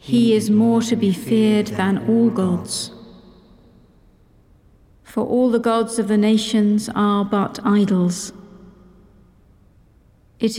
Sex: female